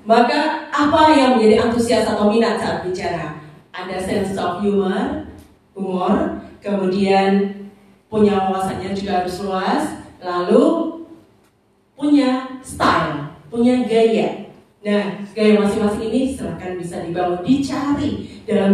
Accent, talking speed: native, 110 wpm